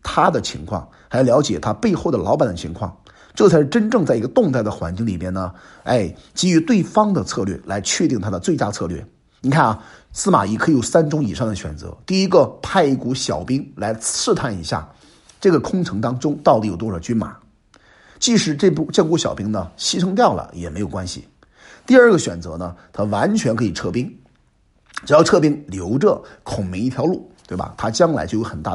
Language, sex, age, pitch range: Chinese, male, 50-69, 95-150 Hz